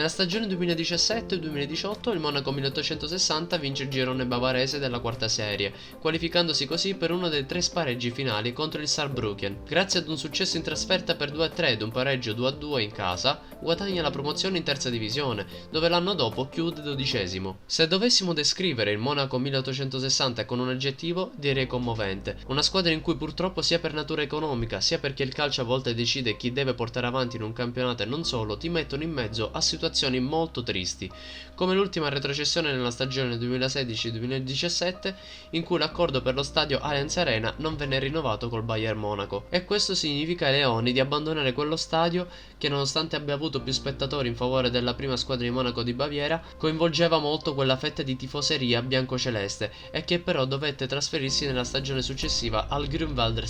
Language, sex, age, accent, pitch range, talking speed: Italian, male, 20-39, native, 125-160 Hz, 175 wpm